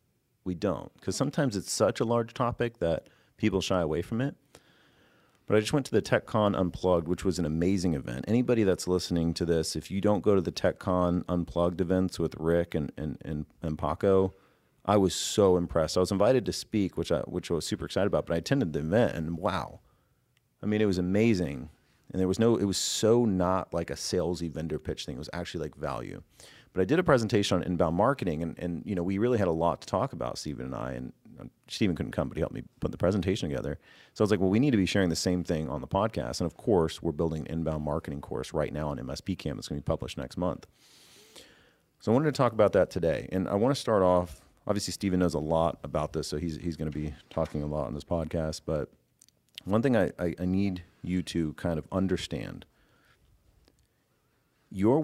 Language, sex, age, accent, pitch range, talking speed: English, male, 30-49, American, 80-100 Hz, 235 wpm